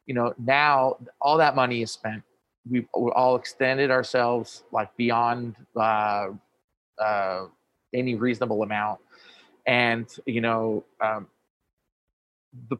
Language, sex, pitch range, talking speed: English, male, 120-140 Hz, 115 wpm